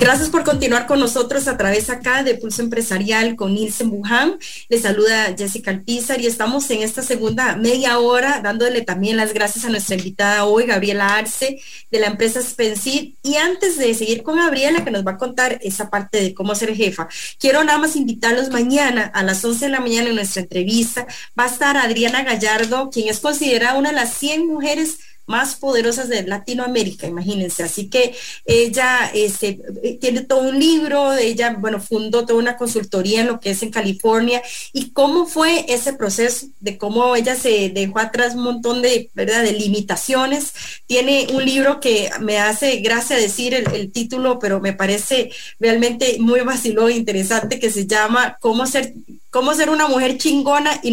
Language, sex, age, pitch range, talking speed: English, female, 30-49, 215-265 Hz, 185 wpm